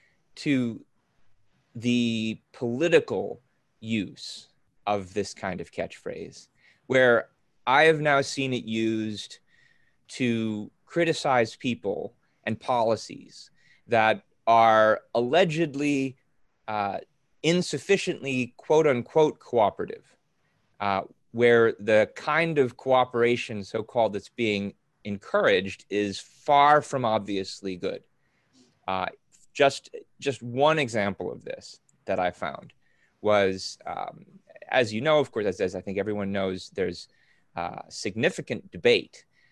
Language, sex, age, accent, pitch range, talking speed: English, male, 30-49, American, 105-145 Hz, 105 wpm